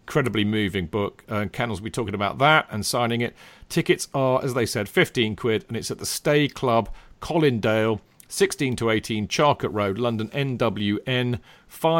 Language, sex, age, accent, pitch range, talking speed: English, male, 40-59, British, 110-145 Hz, 170 wpm